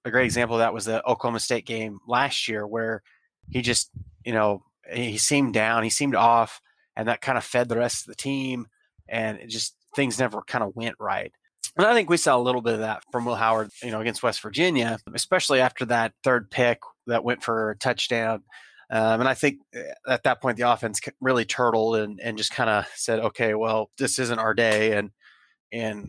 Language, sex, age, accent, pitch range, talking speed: English, male, 30-49, American, 115-130 Hz, 220 wpm